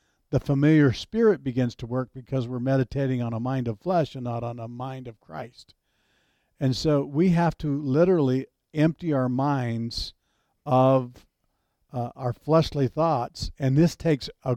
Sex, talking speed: male, 160 wpm